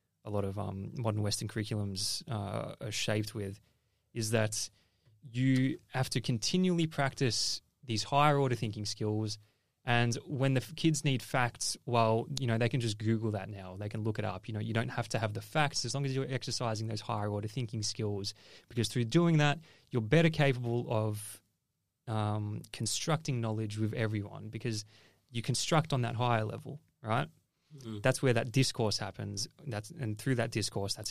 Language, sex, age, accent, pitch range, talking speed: English, male, 20-39, Australian, 105-135 Hz, 180 wpm